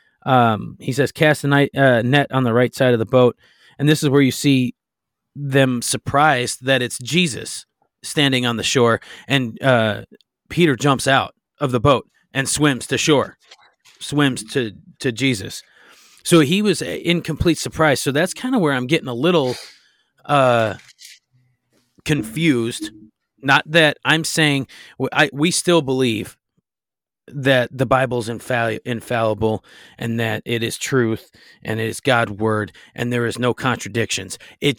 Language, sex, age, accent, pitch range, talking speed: English, male, 30-49, American, 120-145 Hz, 155 wpm